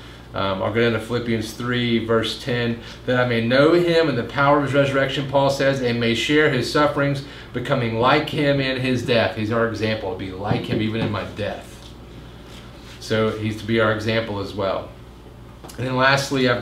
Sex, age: male, 40-59